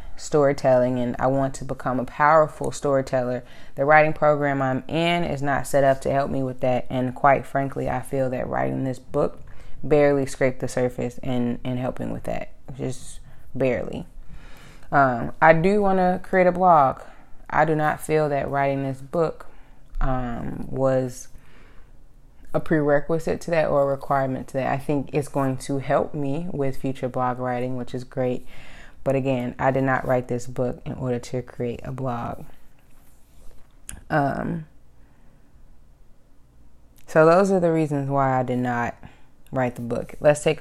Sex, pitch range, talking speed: female, 125-155 Hz, 165 wpm